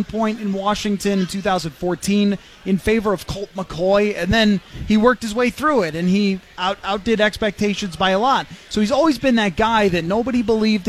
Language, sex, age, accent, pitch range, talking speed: English, male, 20-39, American, 190-230 Hz, 195 wpm